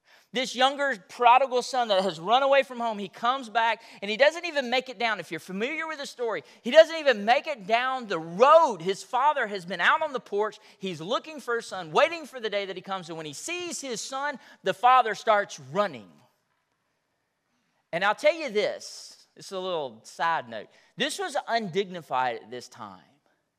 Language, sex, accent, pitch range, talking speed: English, male, American, 180-255 Hz, 205 wpm